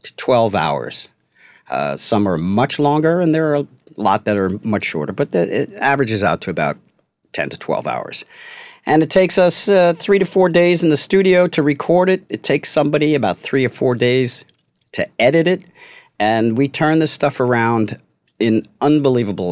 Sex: male